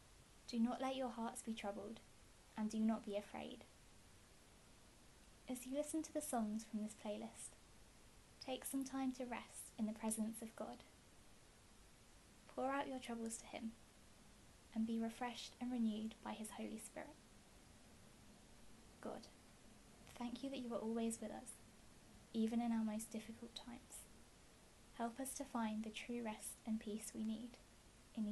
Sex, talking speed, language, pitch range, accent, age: female, 155 wpm, English, 220-255 Hz, British, 20-39